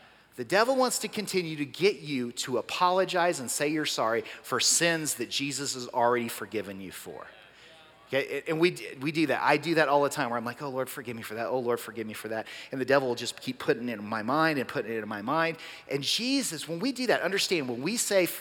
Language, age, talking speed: English, 30-49, 250 wpm